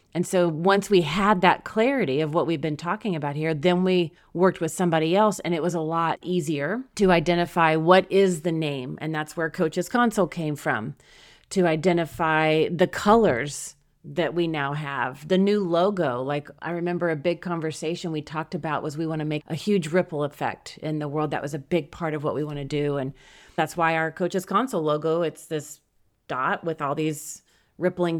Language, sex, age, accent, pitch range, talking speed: English, female, 30-49, American, 155-185 Hz, 205 wpm